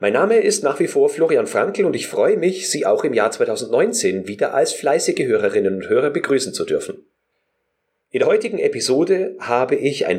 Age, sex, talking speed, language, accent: 40-59, male, 195 wpm, German, German